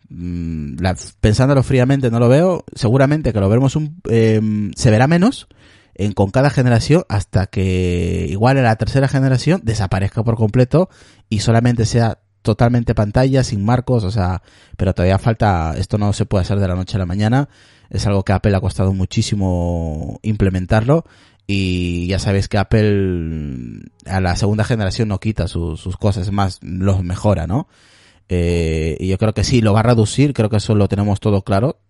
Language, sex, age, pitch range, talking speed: Spanish, male, 30-49, 95-115 Hz, 180 wpm